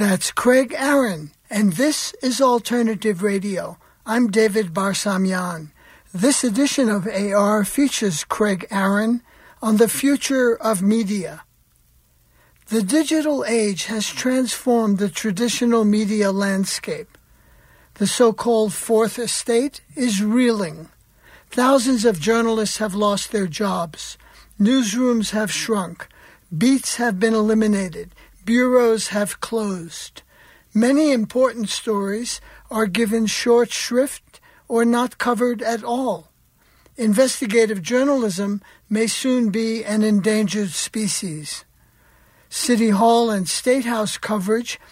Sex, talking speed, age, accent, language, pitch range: male, 110 wpm, 60-79, American, English, 205-245 Hz